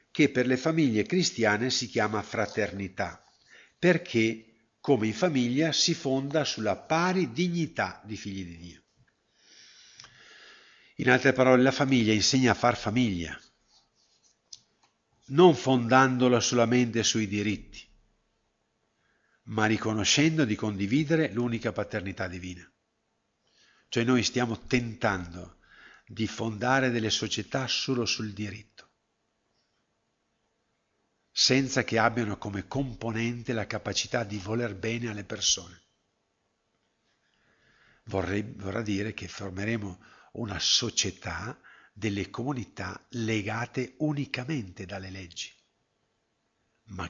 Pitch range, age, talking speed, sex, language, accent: 105-125 Hz, 50-69, 100 wpm, male, Italian, native